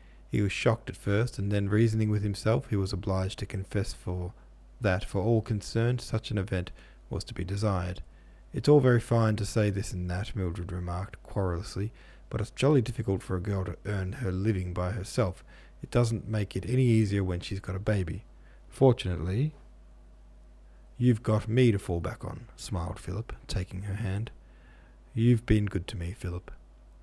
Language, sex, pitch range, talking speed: English, male, 90-110 Hz, 180 wpm